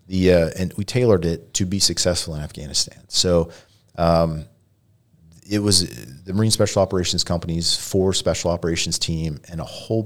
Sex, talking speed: male, 160 wpm